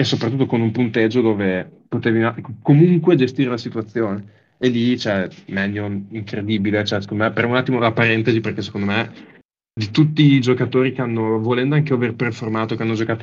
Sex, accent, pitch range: male, native, 110-125 Hz